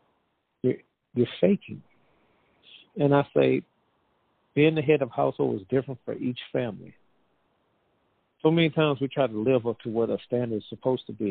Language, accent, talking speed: English, American, 165 wpm